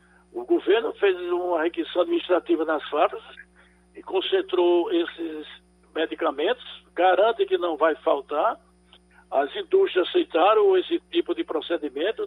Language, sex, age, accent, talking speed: Portuguese, male, 60-79, Brazilian, 115 wpm